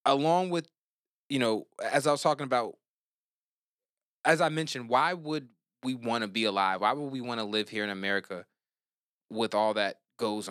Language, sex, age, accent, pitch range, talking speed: English, male, 20-39, American, 105-135 Hz, 185 wpm